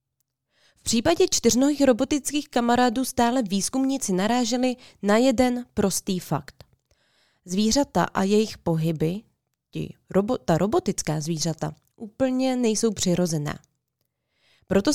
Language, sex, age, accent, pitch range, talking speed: Czech, female, 20-39, native, 175-245 Hz, 90 wpm